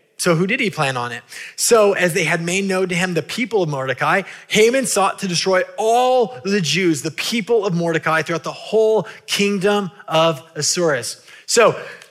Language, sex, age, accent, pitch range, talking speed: English, male, 20-39, American, 165-220 Hz, 185 wpm